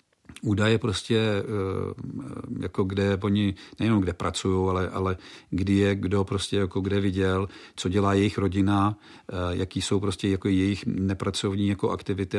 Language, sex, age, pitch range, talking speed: Czech, male, 50-69, 95-110 Hz, 140 wpm